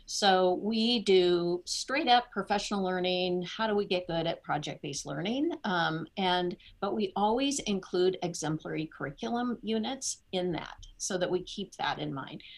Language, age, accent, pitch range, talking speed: English, 50-69, American, 165-195 Hz, 155 wpm